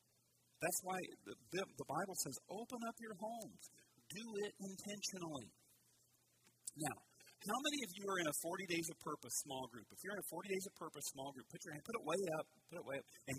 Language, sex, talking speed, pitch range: English, male, 215 wpm, 140-195 Hz